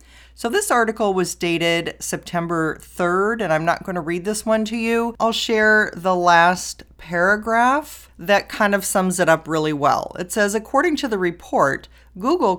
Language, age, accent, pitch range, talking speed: English, 40-59, American, 170-225 Hz, 170 wpm